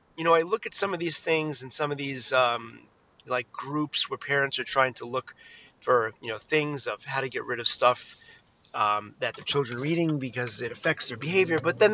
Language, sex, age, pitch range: English, male, 30-49, 140-225 Hz